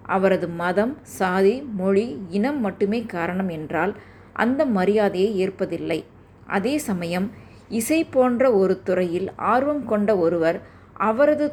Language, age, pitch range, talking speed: Tamil, 20-39, 175-215 Hz, 110 wpm